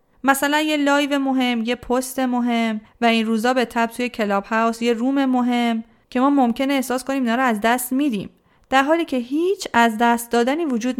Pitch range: 215-275 Hz